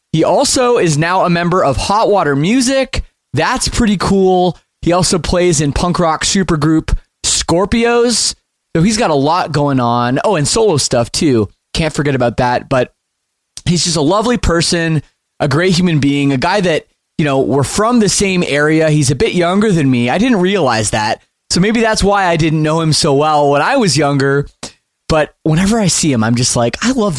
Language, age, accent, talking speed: English, 20-39, American, 200 wpm